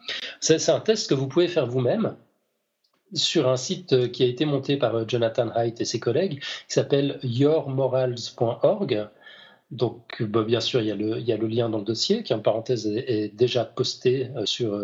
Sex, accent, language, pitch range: male, French, French, 120-160 Hz